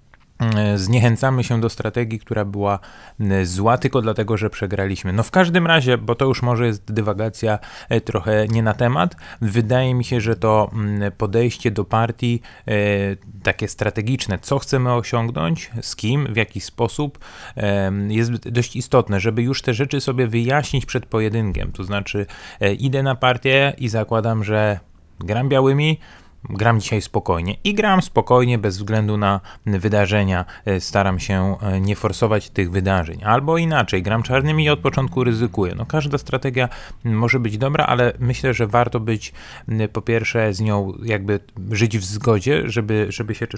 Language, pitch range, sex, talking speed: Polish, 105-125 Hz, male, 150 wpm